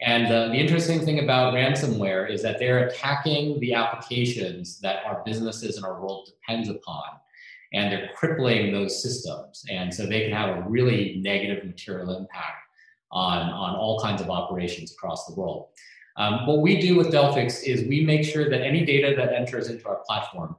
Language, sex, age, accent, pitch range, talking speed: English, male, 30-49, American, 105-135 Hz, 185 wpm